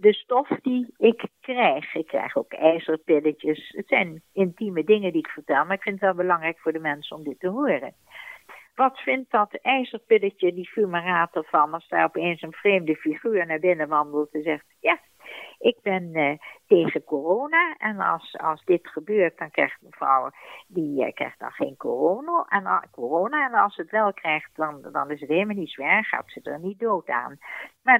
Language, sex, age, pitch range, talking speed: Dutch, female, 60-79, 160-245 Hz, 195 wpm